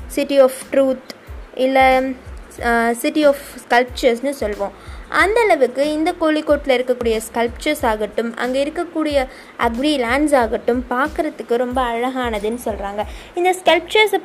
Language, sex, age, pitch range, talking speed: Tamil, female, 20-39, 235-320 Hz, 105 wpm